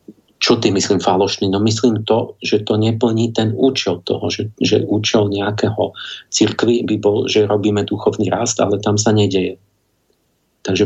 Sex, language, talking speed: male, Slovak, 160 wpm